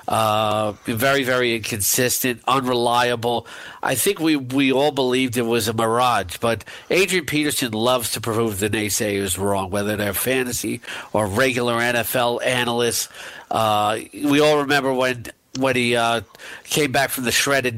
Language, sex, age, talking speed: English, male, 50-69, 150 wpm